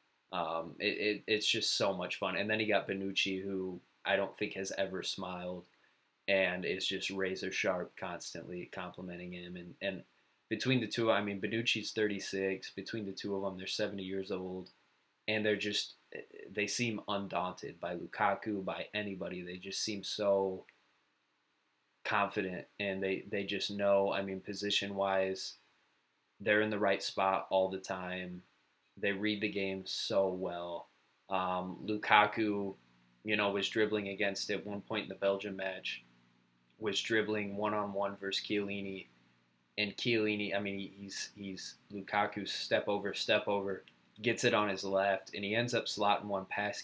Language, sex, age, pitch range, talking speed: English, male, 20-39, 95-105 Hz, 165 wpm